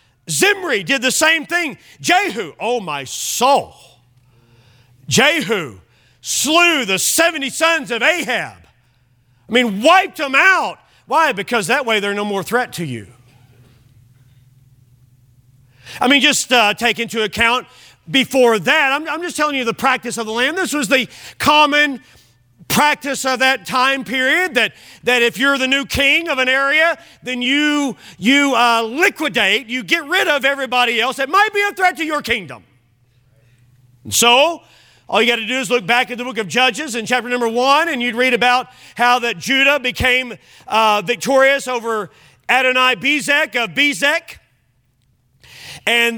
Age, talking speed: 40-59, 160 wpm